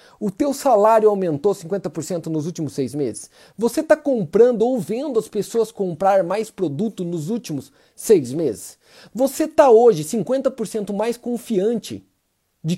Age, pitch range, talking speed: 40-59, 195-280 Hz, 140 wpm